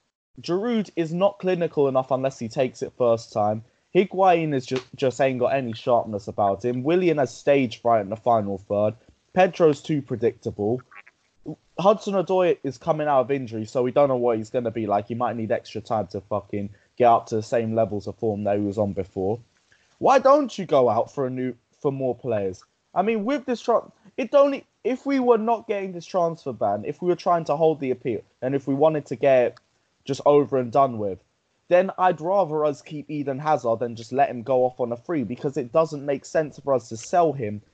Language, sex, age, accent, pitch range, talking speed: English, male, 20-39, British, 115-165 Hz, 220 wpm